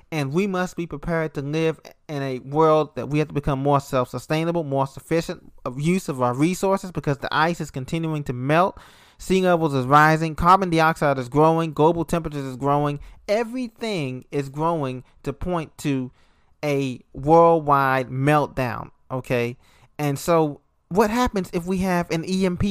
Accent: American